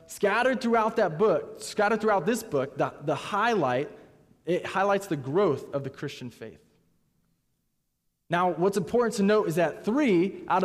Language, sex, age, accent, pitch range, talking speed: English, male, 20-39, American, 155-210 Hz, 160 wpm